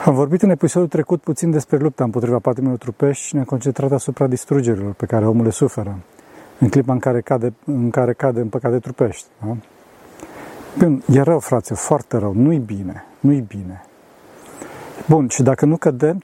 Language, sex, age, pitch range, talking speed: Romanian, male, 40-59, 115-150 Hz, 175 wpm